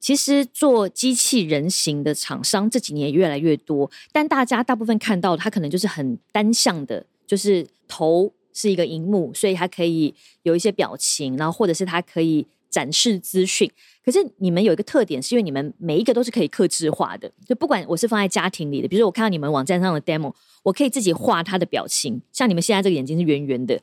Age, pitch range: 20-39, 165-220 Hz